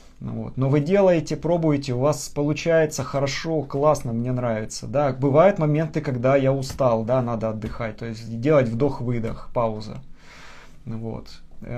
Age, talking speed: 20-39, 145 wpm